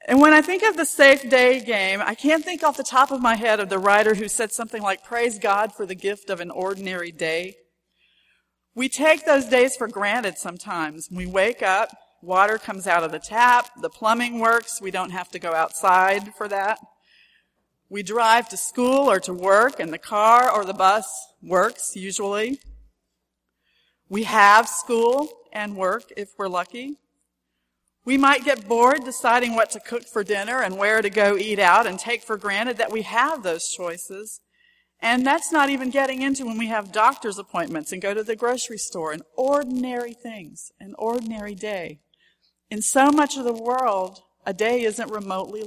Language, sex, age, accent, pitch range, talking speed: English, female, 40-59, American, 195-255 Hz, 185 wpm